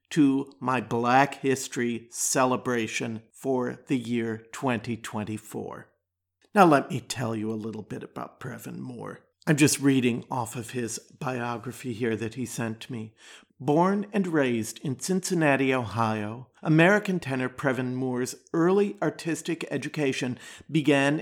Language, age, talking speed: English, 50-69, 130 wpm